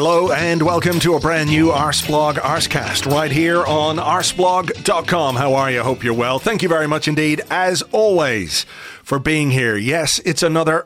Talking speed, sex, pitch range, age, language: 180 wpm, male, 135-170 Hz, 40-59, English